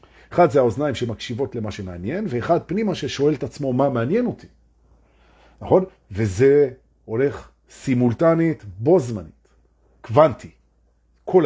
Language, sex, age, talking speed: Hebrew, male, 50-69, 105 wpm